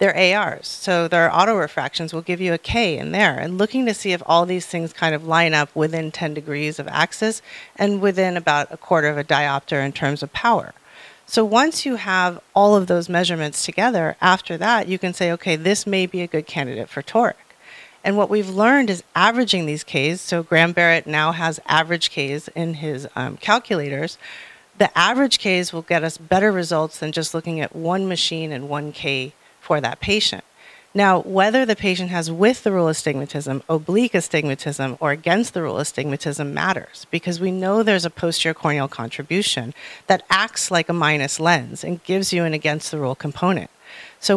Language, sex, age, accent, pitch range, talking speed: English, female, 40-59, American, 150-190 Hz, 195 wpm